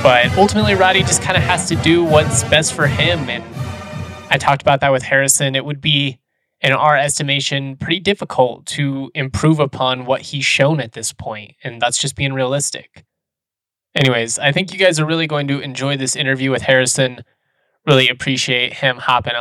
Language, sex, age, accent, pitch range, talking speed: English, male, 20-39, American, 130-150 Hz, 185 wpm